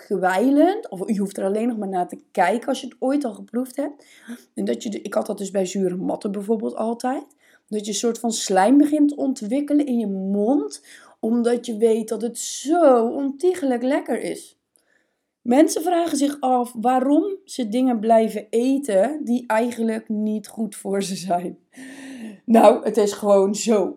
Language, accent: Dutch, Dutch